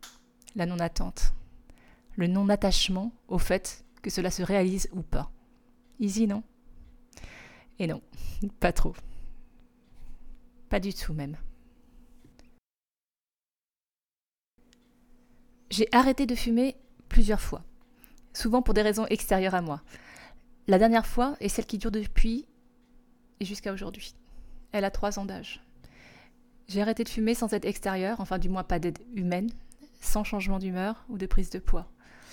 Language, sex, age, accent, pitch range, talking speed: French, female, 20-39, French, 185-245 Hz, 135 wpm